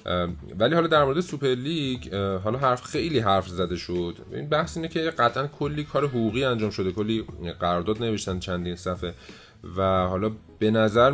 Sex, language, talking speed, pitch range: male, Persian, 170 wpm, 95-120 Hz